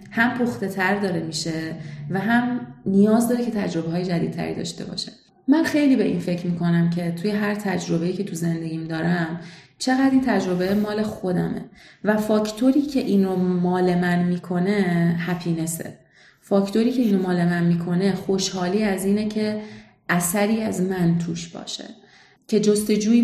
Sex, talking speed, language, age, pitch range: female, 150 wpm, Persian, 30-49, 170-220 Hz